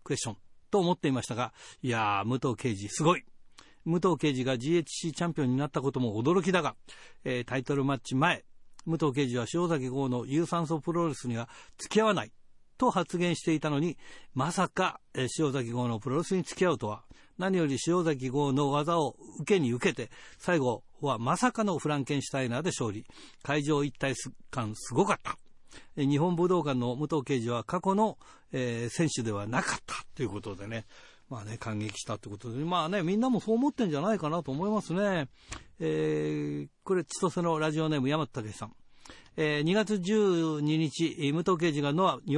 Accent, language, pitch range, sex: native, Japanese, 130-170 Hz, male